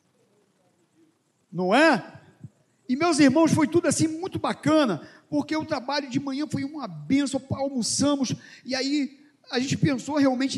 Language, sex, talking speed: Portuguese, male, 140 wpm